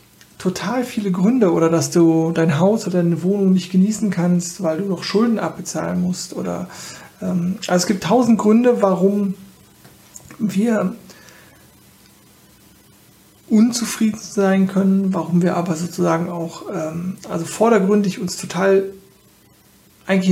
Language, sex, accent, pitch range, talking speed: German, male, German, 175-205 Hz, 125 wpm